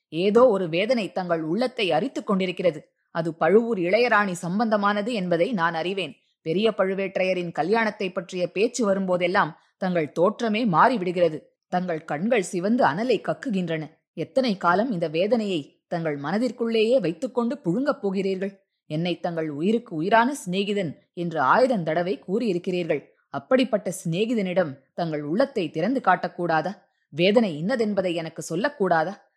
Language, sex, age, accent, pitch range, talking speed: Tamil, female, 20-39, native, 170-220 Hz, 110 wpm